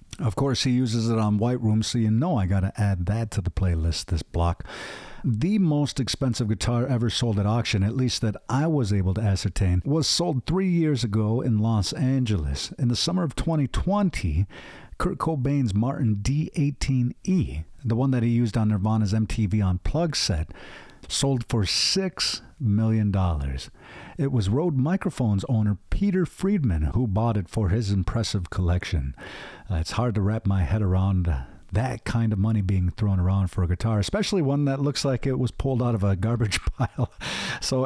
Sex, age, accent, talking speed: male, 50-69, American, 180 wpm